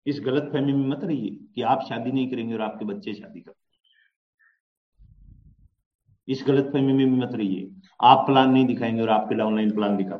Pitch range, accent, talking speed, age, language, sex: 105-140 Hz, native, 195 wpm, 50-69, Hindi, male